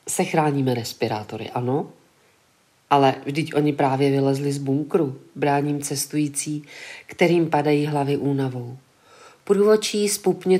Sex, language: female, Czech